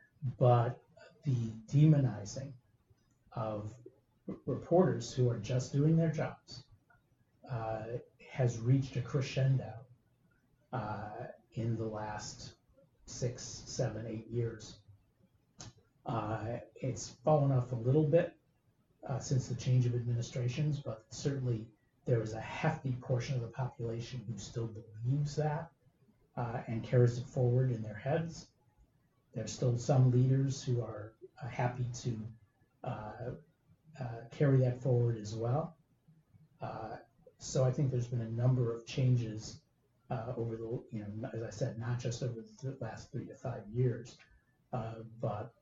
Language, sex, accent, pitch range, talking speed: English, male, American, 115-130 Hz, 135 wpm